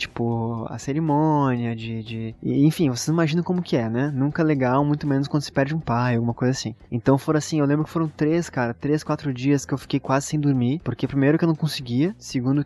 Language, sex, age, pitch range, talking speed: Portuguese, male, 20-39, 130-160 Hz, 235 wpm